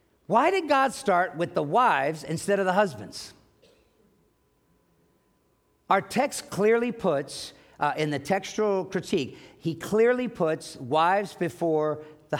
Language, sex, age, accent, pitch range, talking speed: English, male, 50-69, American, 160-235 Hz, 125 wpm